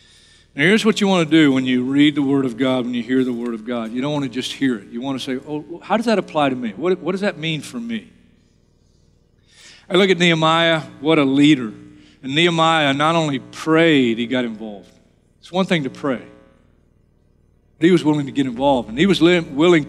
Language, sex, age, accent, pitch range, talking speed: English, male, 40-59, American, 115-180 Hz, 235 wpm